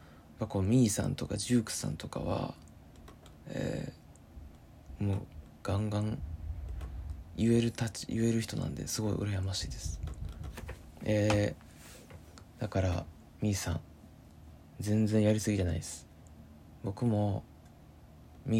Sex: male